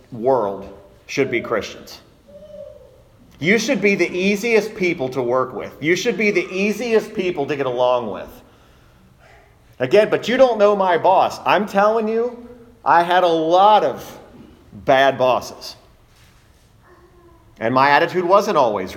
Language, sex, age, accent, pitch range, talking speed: English, male, 40-59, American, 130-200 Hz, 140 wpm